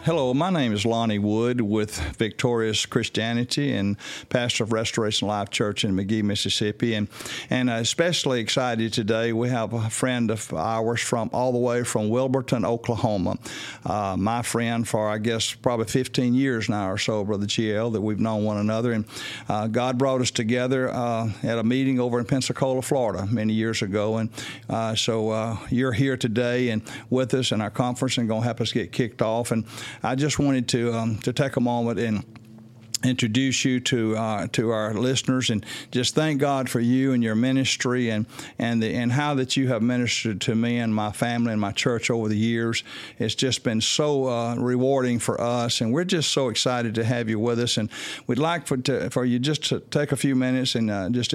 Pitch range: 110-130 Hz